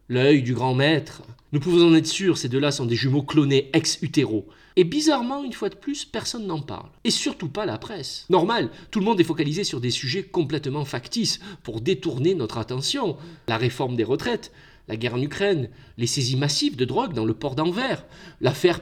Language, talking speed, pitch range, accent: French, 205 wpm, 135-195 Hz, French